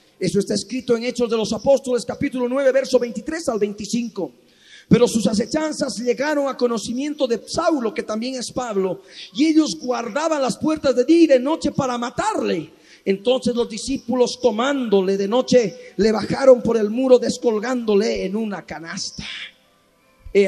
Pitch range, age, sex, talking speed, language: 205-260 Hz, 40-59, male, 160 wpm, Spanish